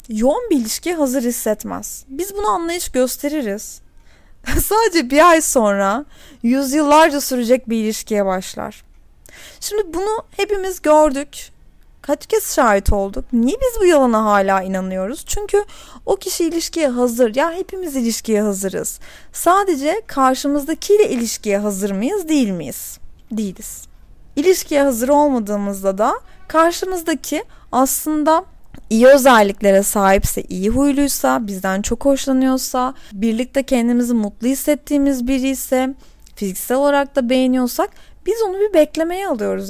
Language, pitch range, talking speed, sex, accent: Turkish, 220-310 Hz, 120 wpm, female, native